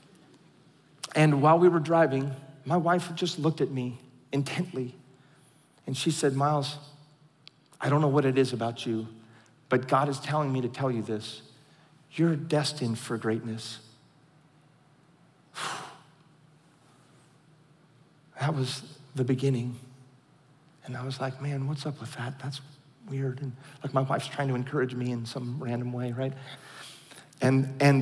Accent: American